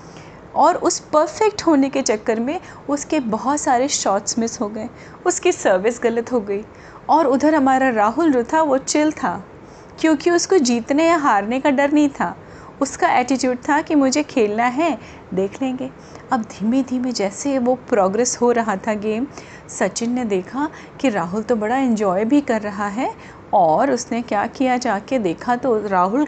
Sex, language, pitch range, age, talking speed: female, Hindi, 215-280 Hz, 30-49, 170 wpm